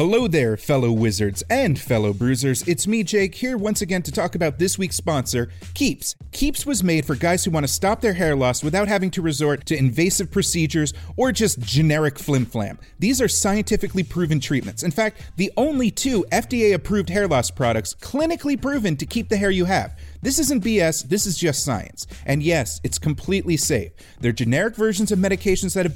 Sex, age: male, 30-49